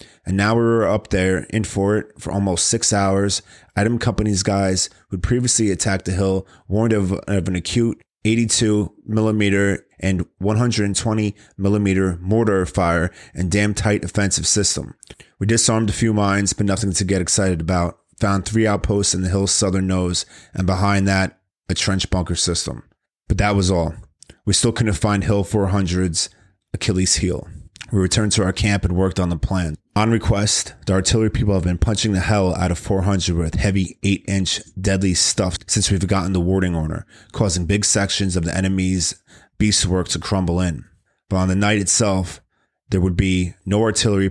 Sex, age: male, 30-49